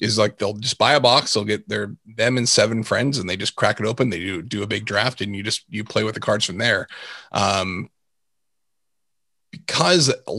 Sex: male